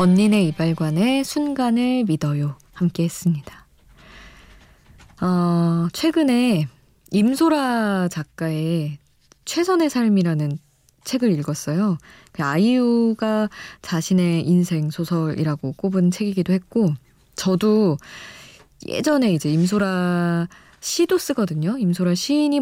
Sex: female